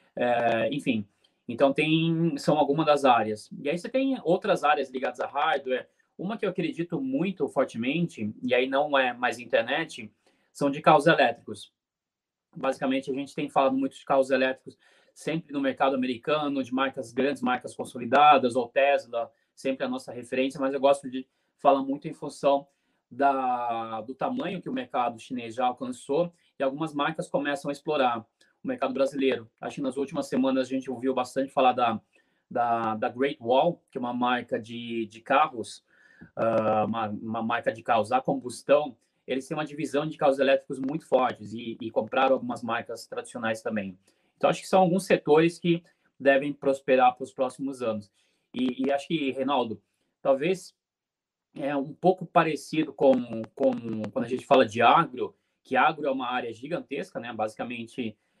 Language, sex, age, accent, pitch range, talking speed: Portuguese, male, 20-39, Brazilian, 125-150 Hz, 170 wpm